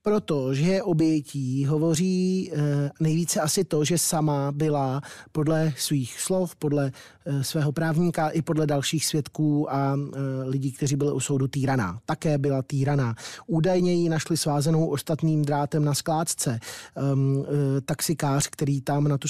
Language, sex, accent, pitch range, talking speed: Czech, male, native, 140-155 Hz, 150 wpm